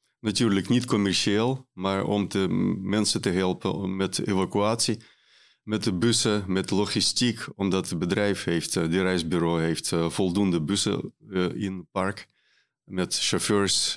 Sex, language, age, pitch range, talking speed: male, Dutch, 30-49, 90-110 Hz, 135 wpm